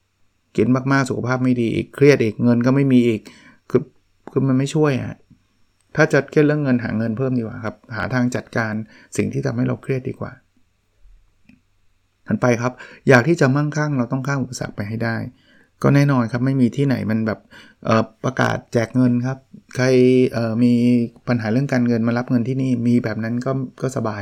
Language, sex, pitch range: Thai, male, 110-130 Hz